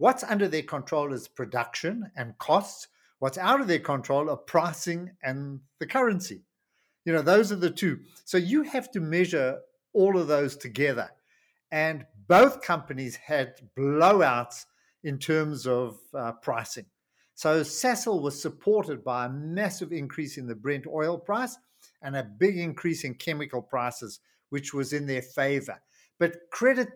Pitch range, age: 130-170 Hz, 50-69